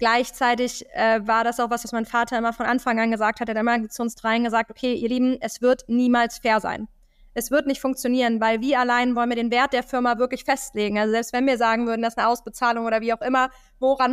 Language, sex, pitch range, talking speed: German, female, 235-265 Hz, 255 wpm